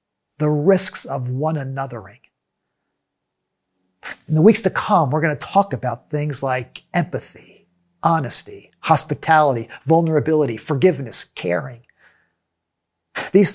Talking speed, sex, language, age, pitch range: 105 wpm, male, English, 50-69, 130-180 Hz